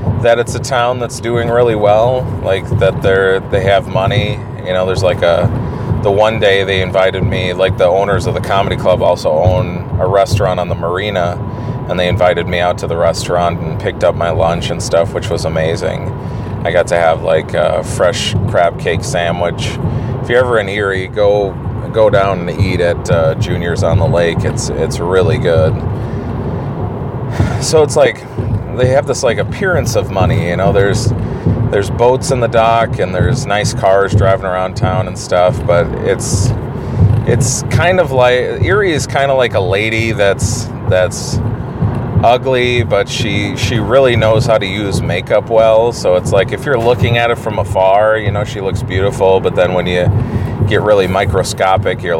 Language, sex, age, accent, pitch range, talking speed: English, male, 30-49, American, 95-120 Hz, 185 wpm